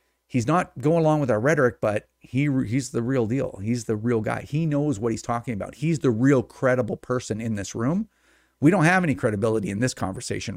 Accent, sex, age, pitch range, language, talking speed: American, male, 40-59, 120-165 Hz, English, 220 wpm